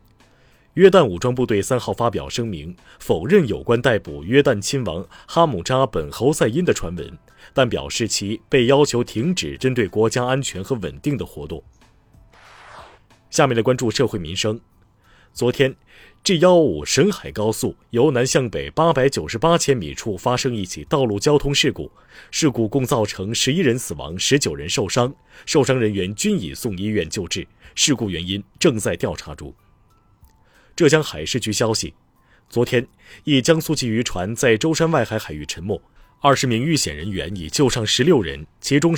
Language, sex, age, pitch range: Chinese, male, 30-49, 100-140 Hz